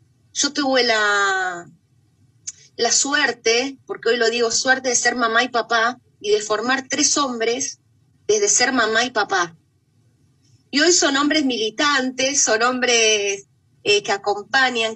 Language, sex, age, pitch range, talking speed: Spanish, female, 30-49, 205-300 Hz, 140 wpm